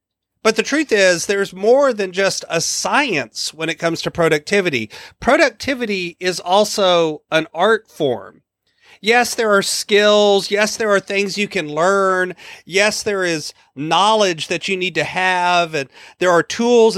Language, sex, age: English, male, 40-59